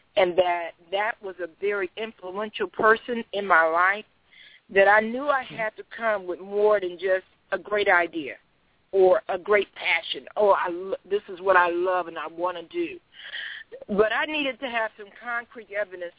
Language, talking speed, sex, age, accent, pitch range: English, 180 wpm, female, 50-69, American, 185-230 Hz